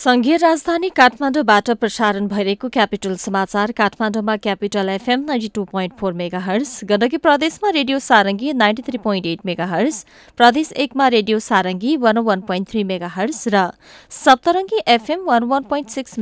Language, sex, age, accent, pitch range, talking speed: English, female, 20-39, Indian, 205-285 Hz, 120 wpm